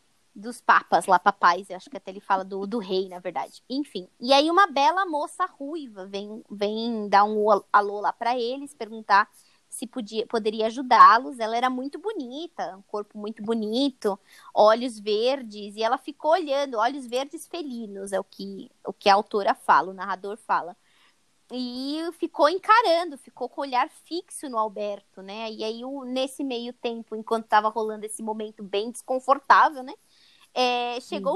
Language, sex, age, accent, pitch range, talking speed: Portuguese, female, 20-39, Brazilian, 215-300 Hz, 165 wpm